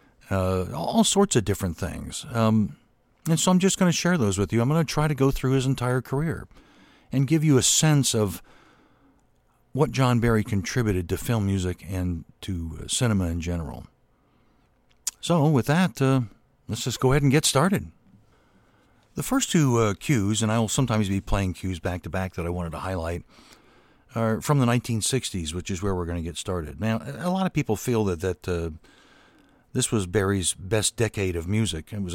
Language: English